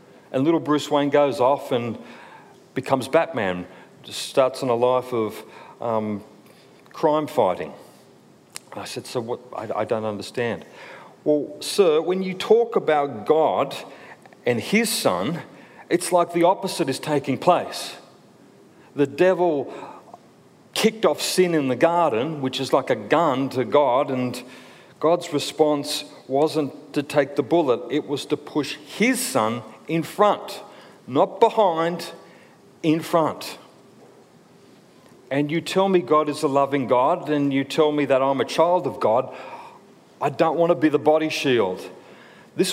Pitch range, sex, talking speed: 140-180 Hz, male, 145 wpm